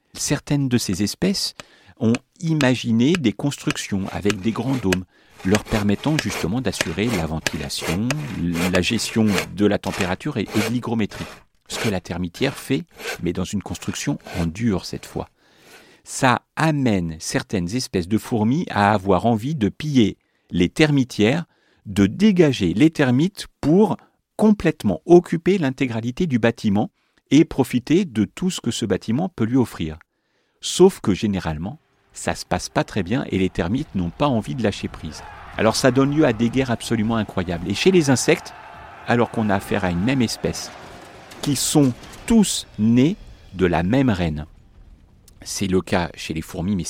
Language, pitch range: French, 95-135 Hz